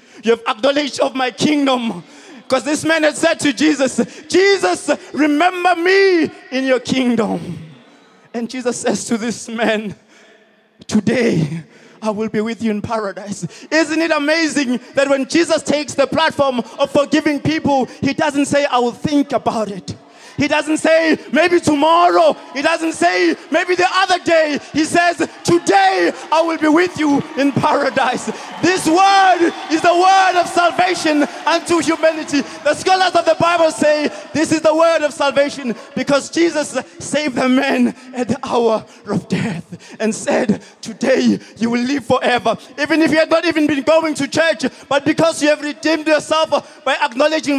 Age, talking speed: 20-39, 165 wpm